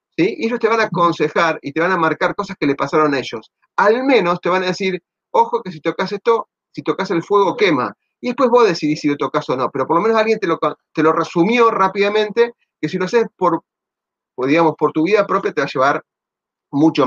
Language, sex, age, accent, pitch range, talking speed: Spanish, male, 30-49, Argentinian, 155-210 Hz, 240 wpm